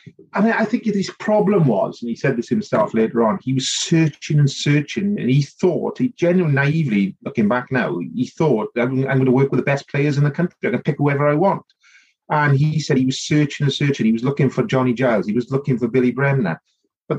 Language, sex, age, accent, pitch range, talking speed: English, male, 30-49, British, 125-160 Hz, 235 wpm